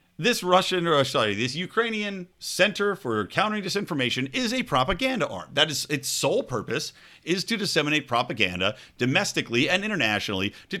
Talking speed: 150 wpm